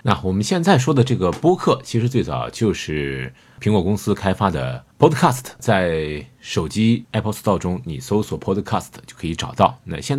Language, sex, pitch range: Chinese, male, 95-130 Hz